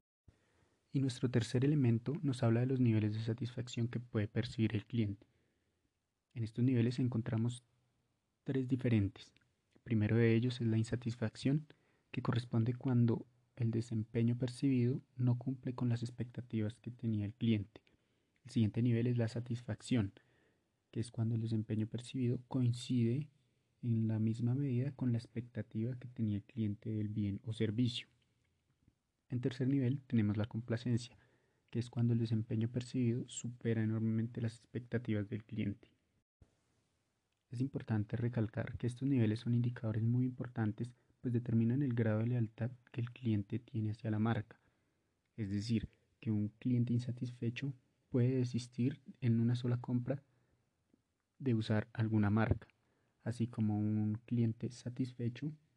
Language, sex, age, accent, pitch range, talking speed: Spanish, male, 30-49, Colombian, 110-125 Hz, 145 wpm